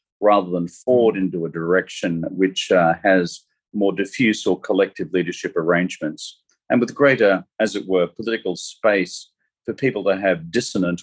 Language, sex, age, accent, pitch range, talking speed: English, male, 40-59, Australian, 90-105 Hz, 150 wpm